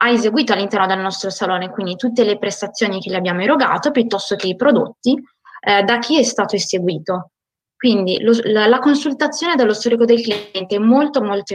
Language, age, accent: Italian, 20-39, native